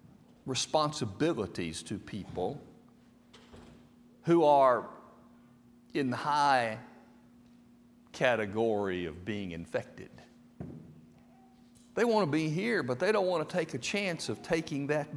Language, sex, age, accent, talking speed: English, male, 60-79, American, 110 wpm